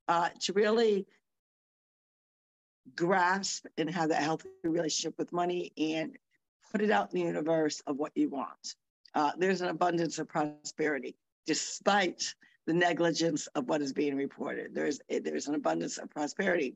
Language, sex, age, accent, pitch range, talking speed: English, female, 50-69, American, 150-185 Hz, 155 wpm